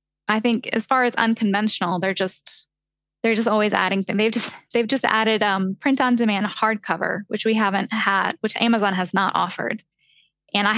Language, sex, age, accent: English, female, 10-29, American